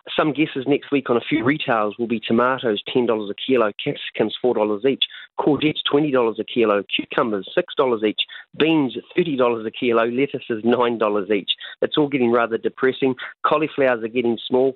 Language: English